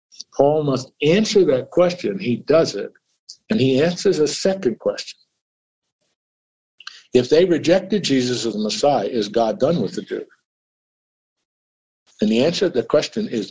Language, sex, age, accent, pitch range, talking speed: English, male, 60-79, American, 120-190 Hz, 150 wpm